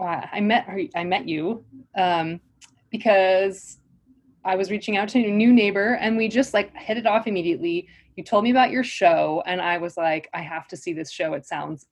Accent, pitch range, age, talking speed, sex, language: American, 180-245 Hz, 20-39, 205 wpm, female, English